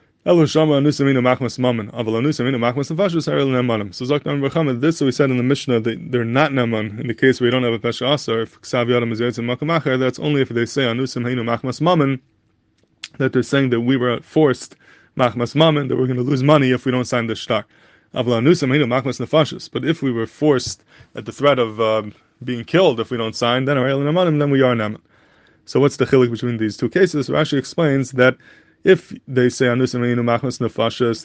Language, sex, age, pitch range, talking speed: English, male, 20-39, 115-140 Hz, 175 wpm